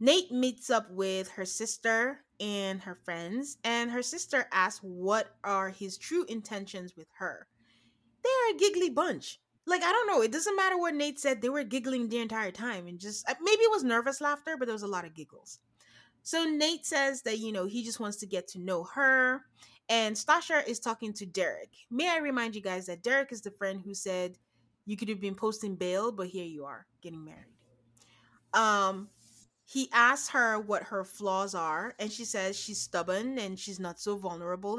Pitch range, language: 185-260 Hz, English